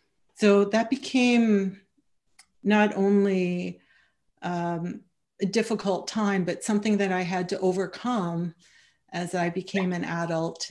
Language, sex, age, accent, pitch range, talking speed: English, female, 40-59, American, 175-195 Hz, 110 wpm